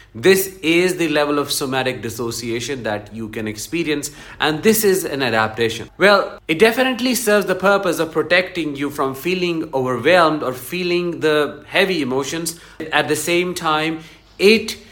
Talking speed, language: 155 wpm, English